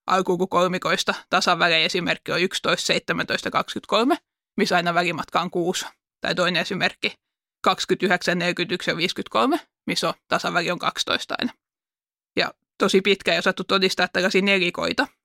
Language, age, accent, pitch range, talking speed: Finnish, 20-39, native, 185-215 Hz, 135 wpm